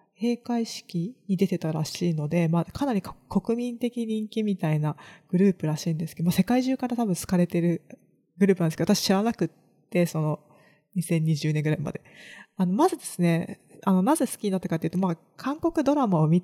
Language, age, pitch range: Japanese, 20-39, 165-225 Hz